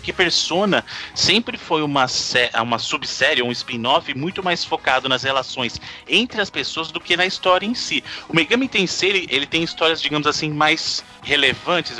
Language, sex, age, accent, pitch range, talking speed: Portuguese, male, 30-49, Brazilian, 135-180 Hz, 175 wpm